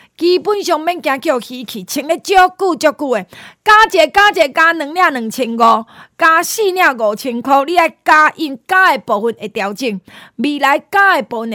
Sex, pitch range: female, 235-320 Hz